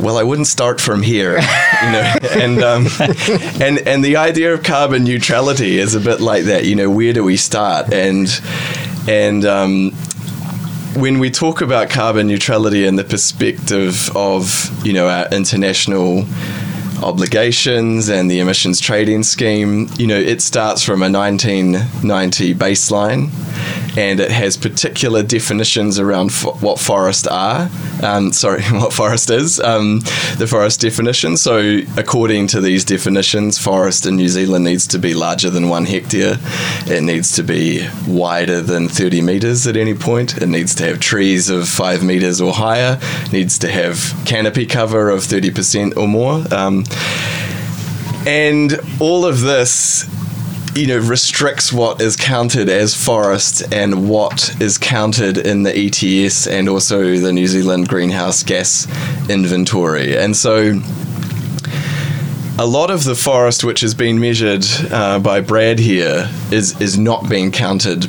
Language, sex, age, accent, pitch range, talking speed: English, male, 20-39, Australian, 95-135 Hz, 150 wpm